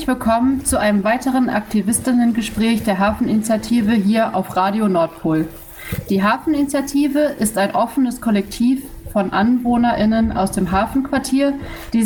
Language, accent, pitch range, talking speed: German, German, 195-240 Hz, 115 wpm